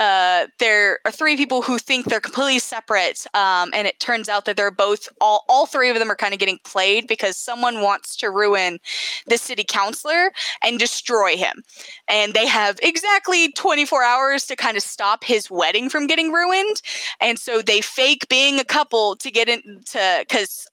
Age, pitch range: 20-39, 205-265 Hz